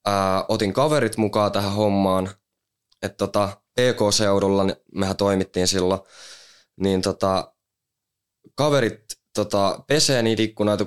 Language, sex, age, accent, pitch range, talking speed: Finnish, male, 20-39, native, 95-110 Hz, 105 wpm